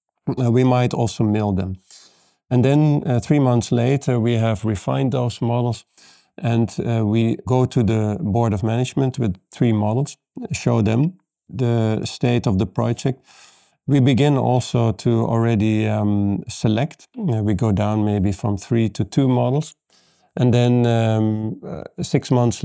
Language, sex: English, male